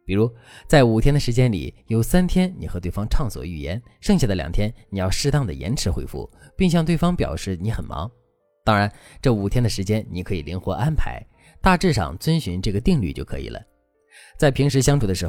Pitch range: 90-140 Hz